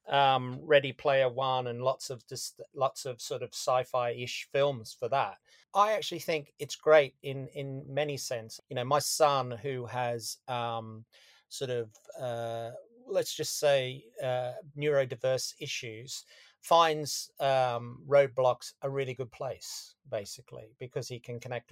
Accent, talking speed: British, 145 wpm